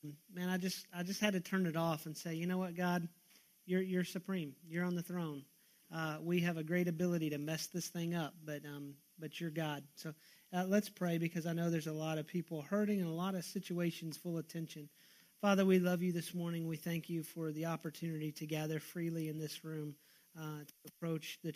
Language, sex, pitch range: English, male, 155-180 Hz